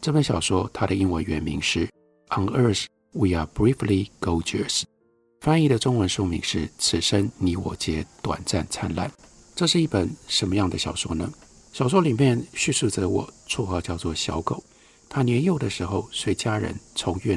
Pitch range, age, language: 90-140 Hz, 50-69, Chinese